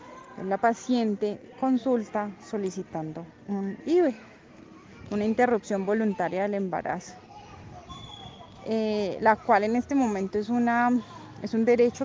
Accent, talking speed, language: Colombian, 105 wpm, Spanish